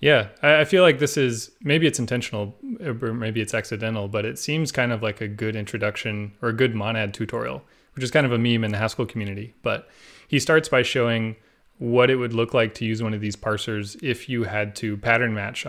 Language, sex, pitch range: English, male, 105-125 Hz